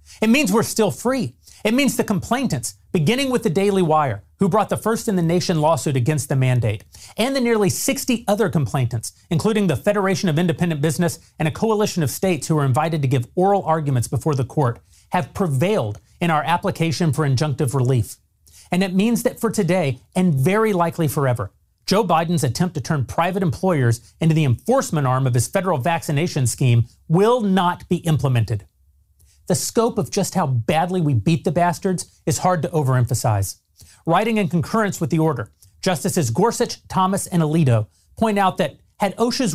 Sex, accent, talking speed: male, American, 180 wpm